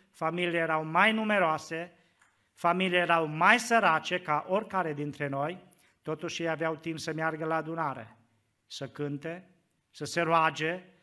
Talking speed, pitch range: 135 wpm, 140-185 Hz